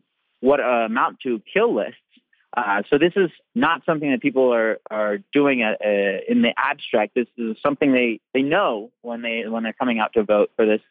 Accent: American